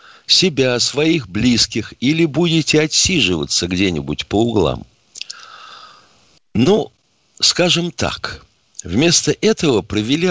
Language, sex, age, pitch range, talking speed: Russian, male, 50-69, 95-135 Hz, 85 wpm